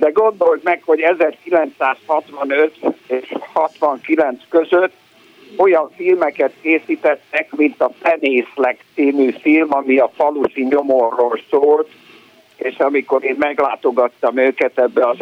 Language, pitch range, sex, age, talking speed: Hungarian, 135-160 Hz, male, 60-79, 110 wpm